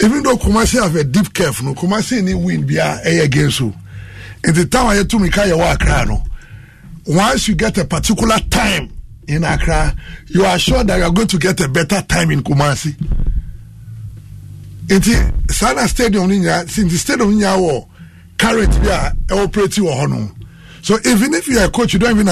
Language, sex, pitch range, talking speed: English, male, 140-195 Hz, 180 wpm